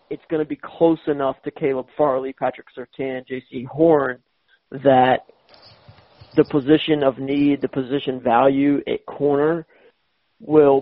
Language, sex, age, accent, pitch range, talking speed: English, male, 40-59, American, 135-155 Hz, 135 wpm